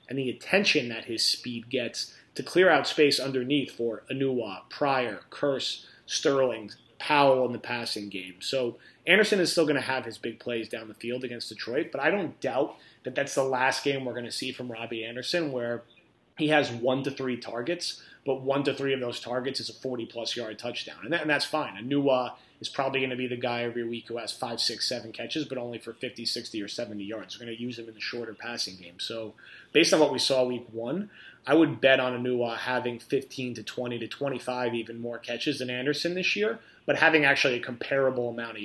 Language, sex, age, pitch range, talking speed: English, male, 30-49, 120-140 Hz, 225 wpm